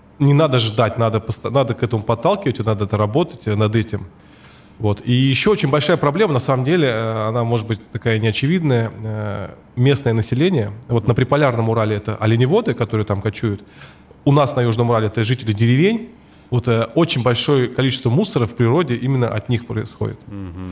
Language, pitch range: Russian, 110-135 Hz